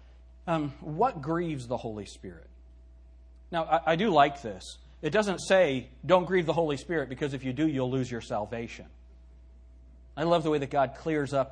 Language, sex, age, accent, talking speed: English, male, 40-59, American, 190 wpm